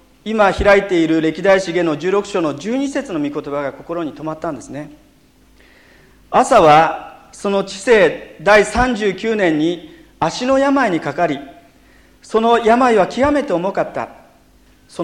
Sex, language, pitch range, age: male, Japanese, 165-225 Hz, 40-59